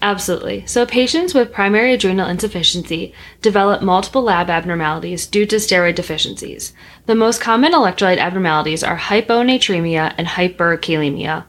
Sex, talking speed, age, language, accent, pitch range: female, 125 wpm, 10-29, English, American, 170-210 Hz